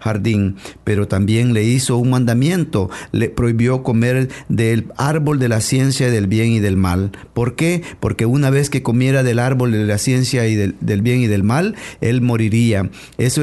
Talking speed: 190 wpm